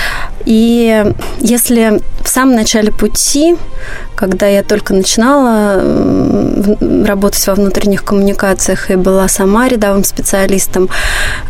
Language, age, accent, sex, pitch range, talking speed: Russian, 20-39, native, female, 195-235 Hz, 100 wpm